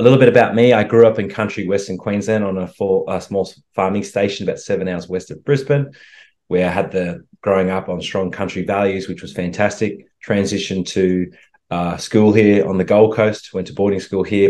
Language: English